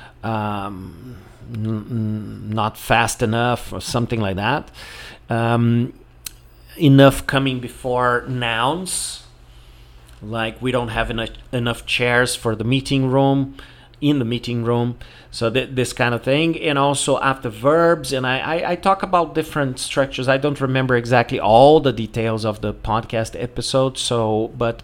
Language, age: English, 40-59